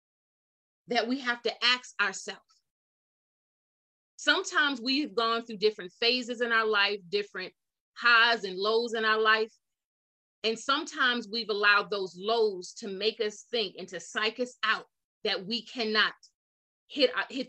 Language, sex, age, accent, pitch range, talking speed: English, female, 30-49, American, 205-245 Hz, 145 wpm